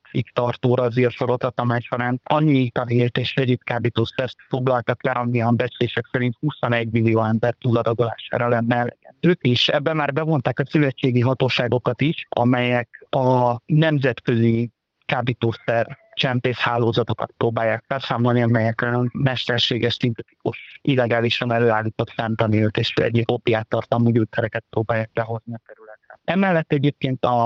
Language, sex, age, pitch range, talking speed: Hungarian, male, 50-69, 120-130 Hz, 120 wpm